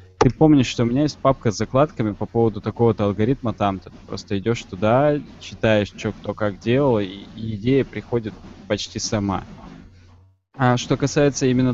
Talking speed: 165 wpm